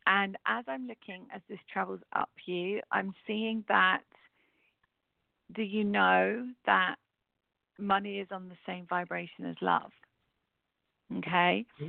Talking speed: 125 wpm